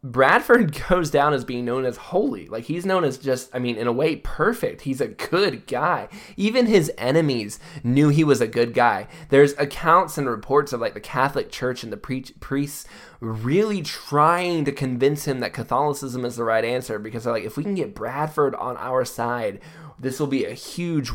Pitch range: 115-145 Hz